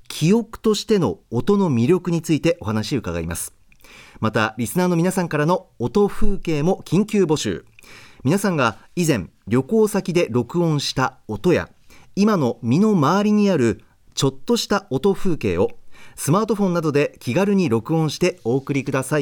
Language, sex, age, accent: Japanese, male, 40-59, native